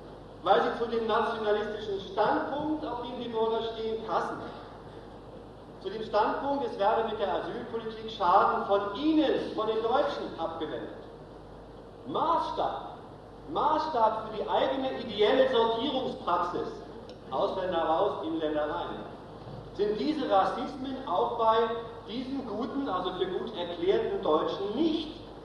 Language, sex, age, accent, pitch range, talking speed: German, male, 50-69, German, 210-305 Hz, 120 wpm